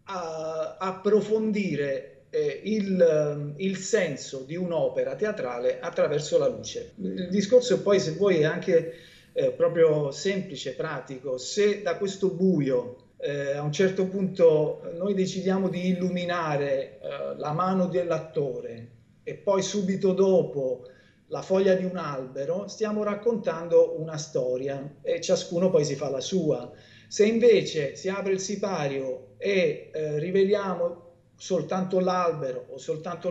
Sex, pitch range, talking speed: male, 155-210 Hz, 135 wpm